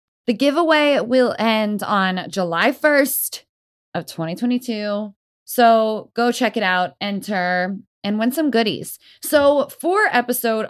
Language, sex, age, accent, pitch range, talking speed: English, female, 20-39, American, 190-265 Hz, 125 wpm